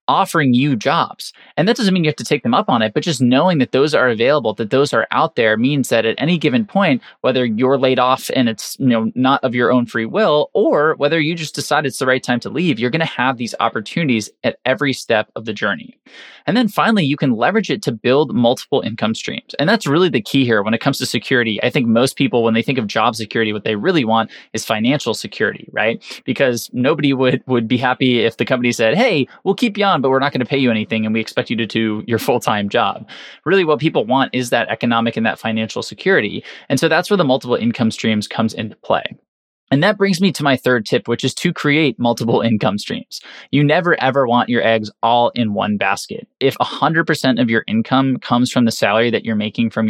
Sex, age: male, 20-39